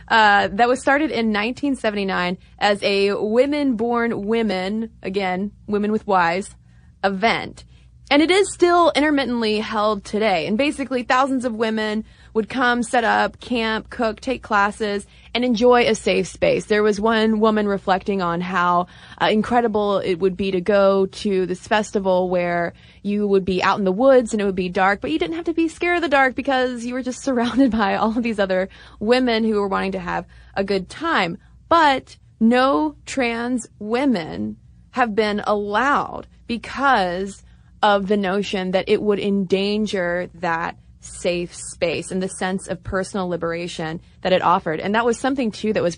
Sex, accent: female, American